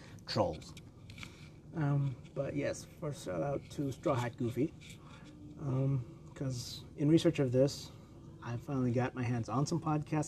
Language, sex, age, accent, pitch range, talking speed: English, male, 30-49, American, 120-150 Hz, 145 wpm